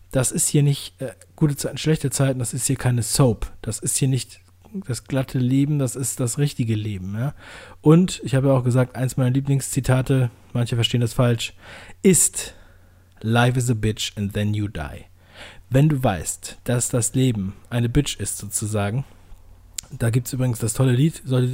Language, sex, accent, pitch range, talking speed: German, male, German, 105-145 Hz, 185 wpm